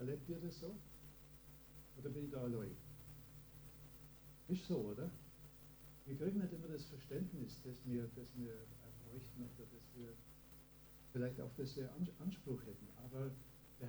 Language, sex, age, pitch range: German, male, 60-79, 130-145 Hz